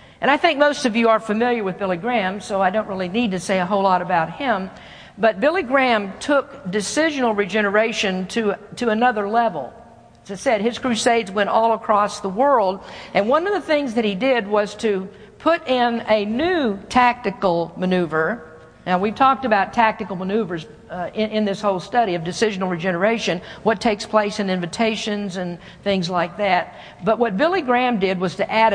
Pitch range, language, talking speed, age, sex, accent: 190-235 Hz, English, 190 wpm, 50-69, female, American